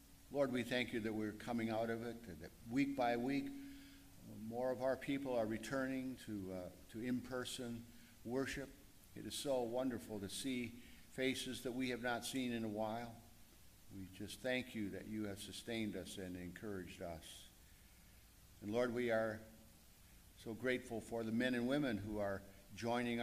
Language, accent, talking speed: English, American, 175 wpm